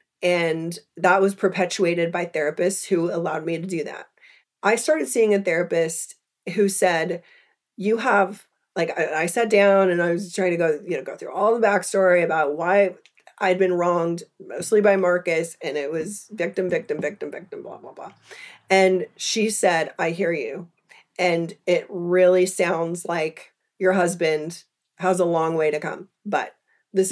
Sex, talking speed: female, 175 wpm